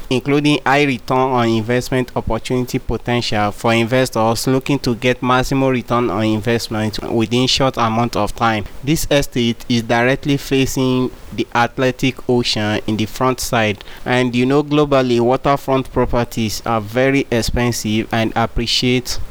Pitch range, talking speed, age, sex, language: 115-130 Hz, 135 wpm, 30-49, male, English